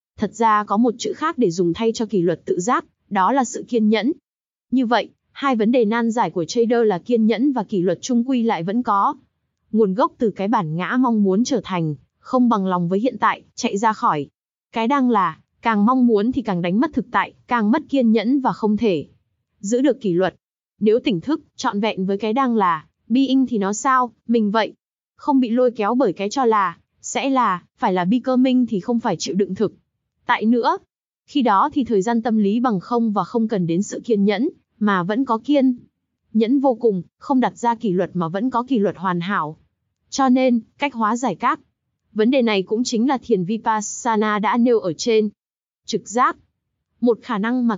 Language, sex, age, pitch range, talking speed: Vietnamese, female, 20-39, 200-255 Hz, 220 wpm